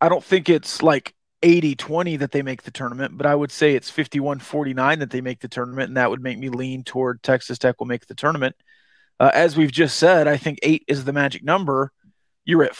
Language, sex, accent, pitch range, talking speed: English, male, American, 140-175 Hz, 230 wpm